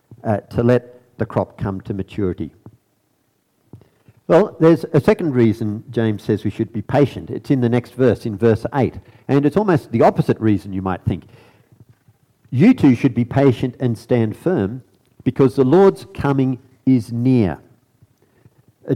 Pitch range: 110-135 Hz